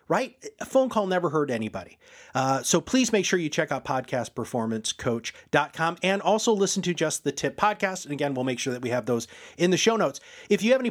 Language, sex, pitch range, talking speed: English, male, 130-195 Hz, 225 wpm